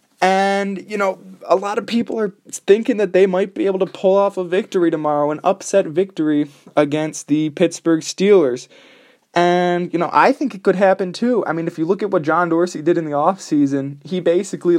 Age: 20-39